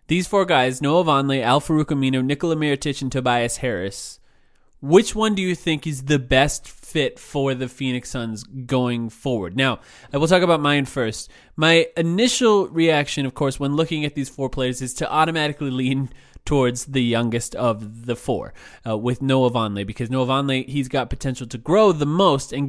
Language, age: English, 20-39